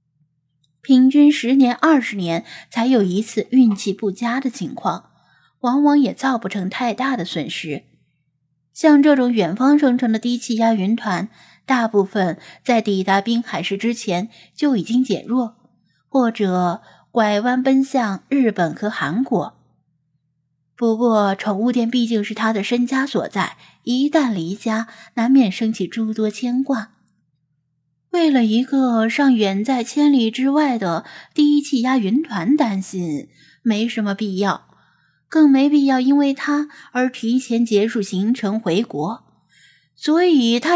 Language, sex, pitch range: Chinese, female, 200-270 Hz